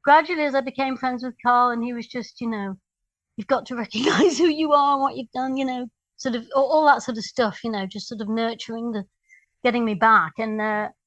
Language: English